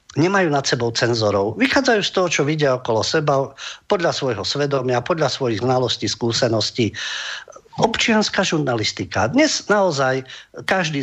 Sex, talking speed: male, 125 wpm